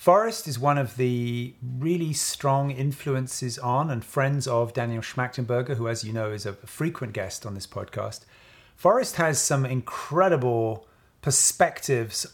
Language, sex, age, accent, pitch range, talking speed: English, male, 30-49, British, 115-145 Hz, 145 wpm